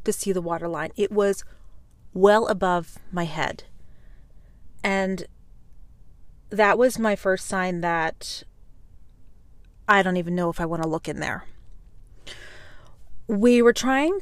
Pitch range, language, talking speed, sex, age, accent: 165-200 Hz, English, 135 wpm, female, 30-49, American